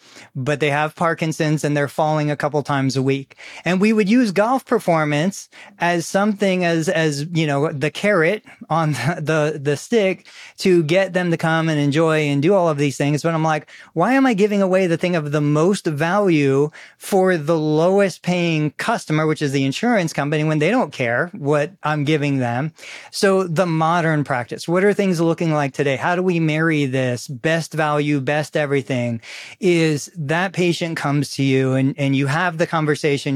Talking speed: 190 wpm